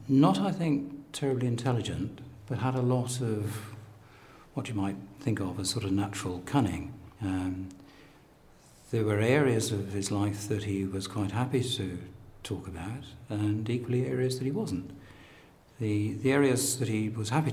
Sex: male